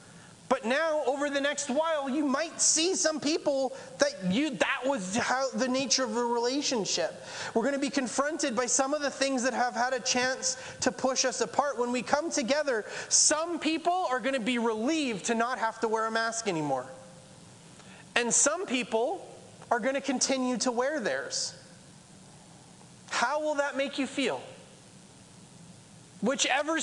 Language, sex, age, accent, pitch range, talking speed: English, male, 30-49, American, 240-295 Hz, 170 wpm